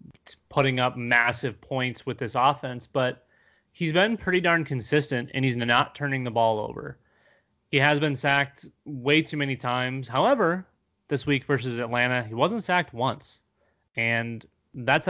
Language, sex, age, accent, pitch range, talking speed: English, male, 30-49, American, 120-150 Hz, 155 wpm